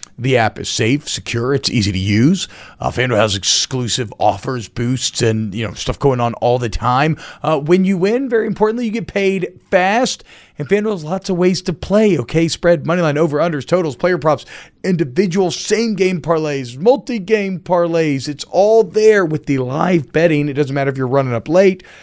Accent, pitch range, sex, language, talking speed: American, 130-180 Hz, male, English, 195 wpm